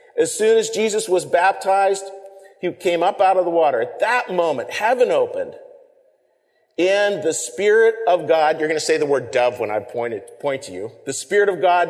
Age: 40-59